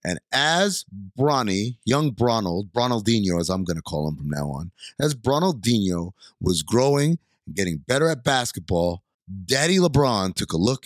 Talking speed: 160 wpm